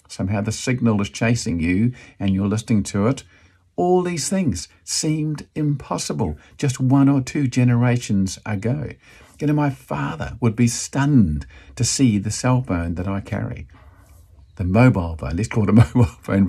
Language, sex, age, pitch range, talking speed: English, male, 50-69, 85-120 Hz, 165 wpm